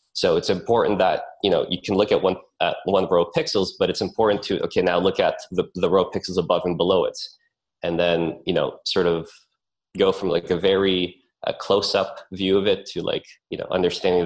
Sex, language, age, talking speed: male, English, 20-39, 225 wpm